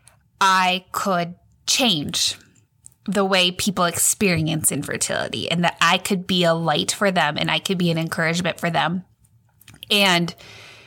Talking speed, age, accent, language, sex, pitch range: 145 wpm, 20-39, American, English, female, 170-210 Hz